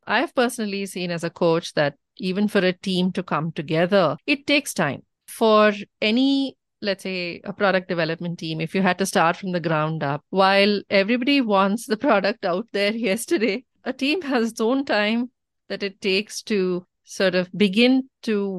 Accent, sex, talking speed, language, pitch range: Indian, female, 180 wpm, English, 185-245 Hz